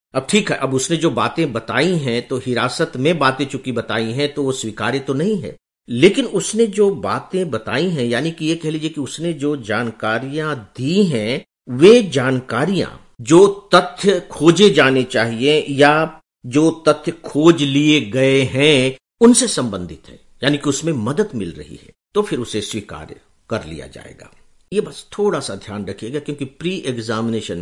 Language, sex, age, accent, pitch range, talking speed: English, male, 50-69, Indian, 120-165 Hz, 170 wpm